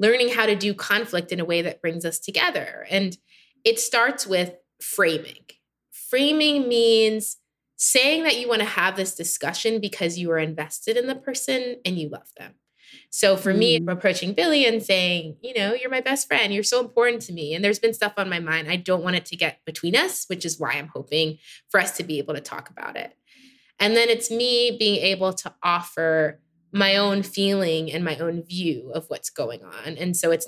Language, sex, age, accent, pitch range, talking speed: English, female, 20-39, American, 170-230 Hz, 215 wpm